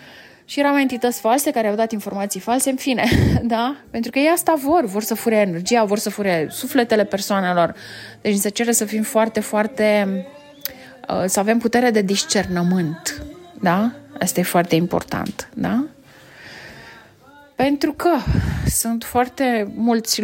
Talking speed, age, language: 145 wpm, 20-39, English